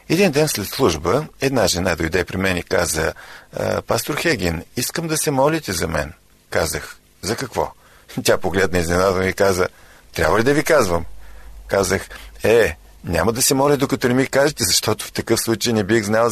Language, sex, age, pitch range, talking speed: Bulgarian, male, 50-69, 95-145 Hz, 180 wpm